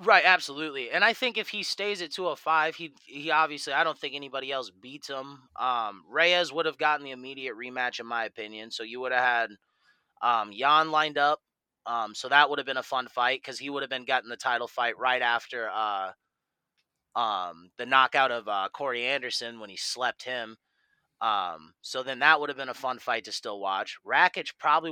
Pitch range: 125-160 Hz